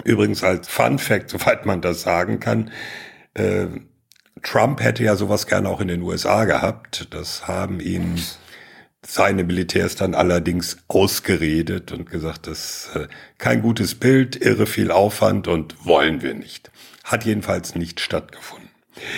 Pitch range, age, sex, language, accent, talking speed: 95-120 Hz, 60-79, male, German, German, 145 wpm